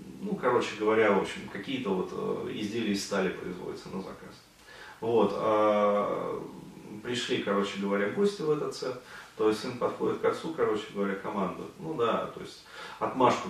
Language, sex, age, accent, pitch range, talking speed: Russian, male, 30-49, native, 100-150 Hz, 155 wpm